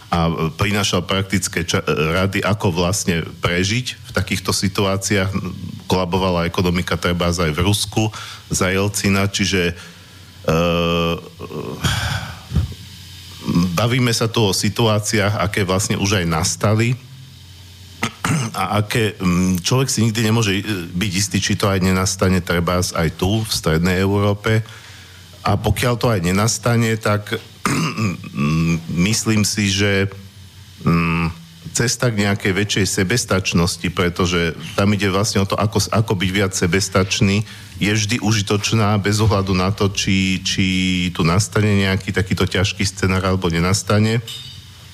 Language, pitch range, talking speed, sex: Slovak, 90-105 Hz, 120 wpm, male